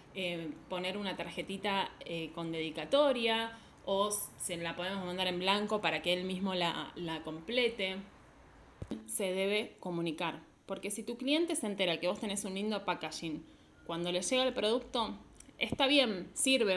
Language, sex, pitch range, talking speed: Spanish, female, 190-240 Hz, 160 wpm